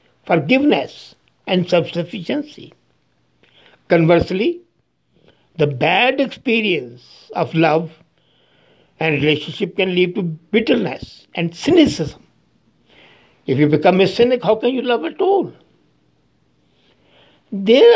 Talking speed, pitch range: 100 wpm, 155-240 Hz